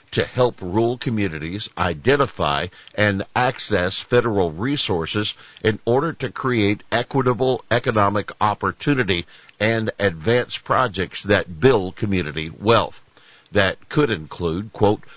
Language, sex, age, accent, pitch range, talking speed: English, male, 60-79, American, 95-120 Hz, 105 wpm